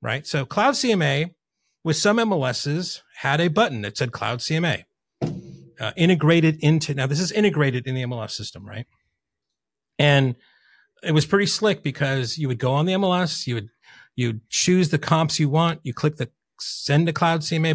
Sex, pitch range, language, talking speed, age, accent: male, 125-175 Hz, English, 180 wpm, 40-59, American